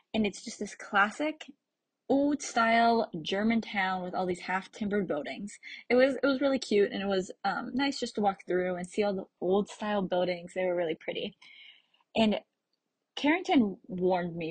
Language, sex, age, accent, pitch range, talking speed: English, female, 20-39, American, 185-235 Hz, 175 wpm